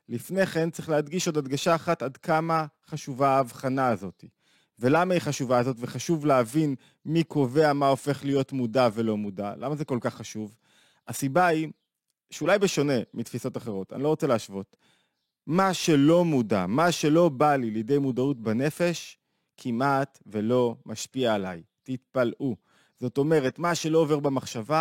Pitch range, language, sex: 120-155 Hz, Hebrew, male